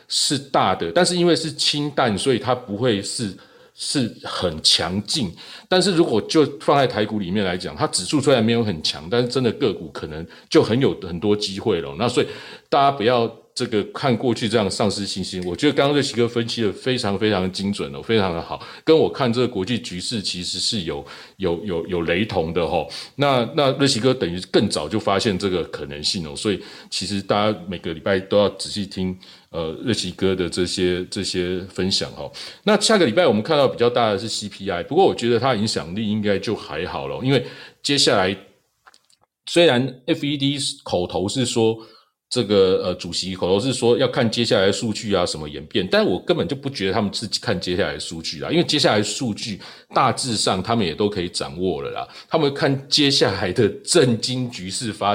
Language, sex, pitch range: Chinese, male, 100-130 Hz